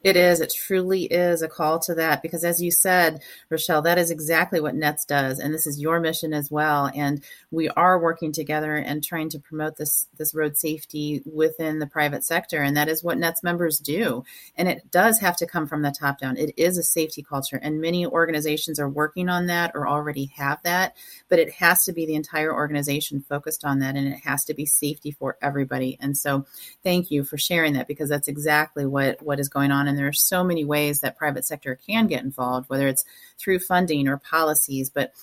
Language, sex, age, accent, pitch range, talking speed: English, female, 30-49, American, 140-170 Hz, 220 wpm